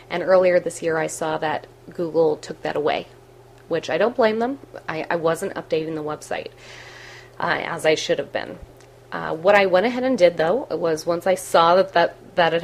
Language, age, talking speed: English, 30-49, 205 wpm